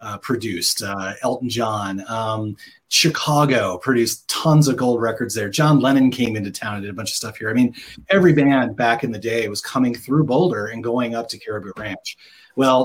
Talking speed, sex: 205 wpm, male